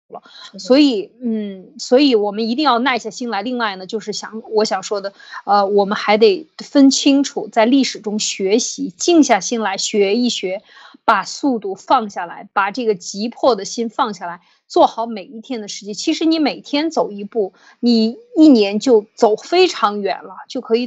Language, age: Chinese, 20-39